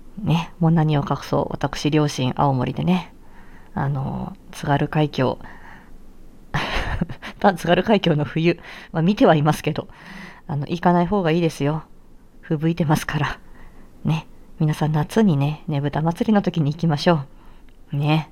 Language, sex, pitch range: Japanese, female, 145-185 Hz